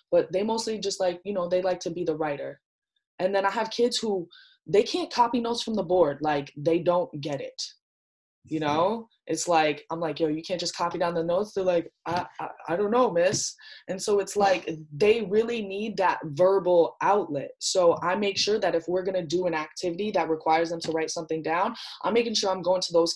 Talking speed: 230 wpm